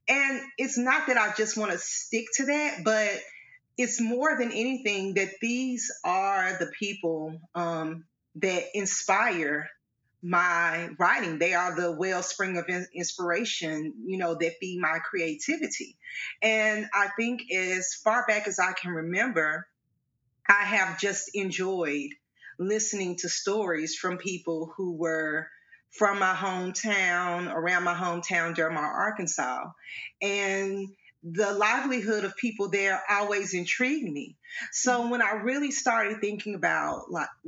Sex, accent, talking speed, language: female, American, 135 wpm, English